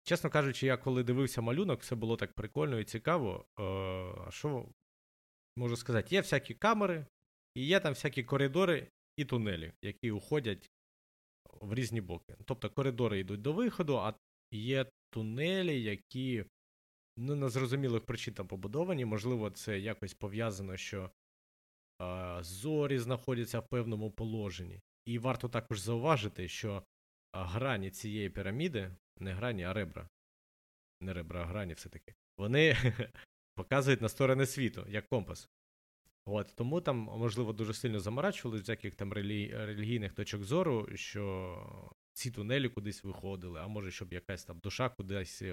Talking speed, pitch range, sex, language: 140 wpm, 95-130 Hz, male, Ukrainian